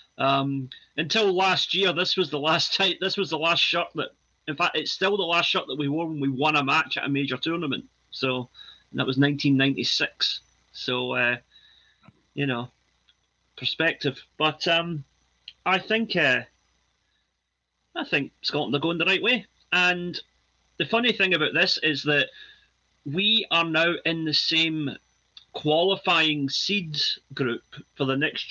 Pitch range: 135-175 Hz